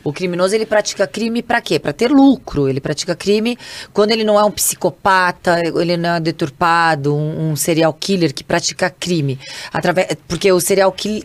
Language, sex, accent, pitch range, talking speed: English, female, Brazilian, 170-225 Hz, 190 wpm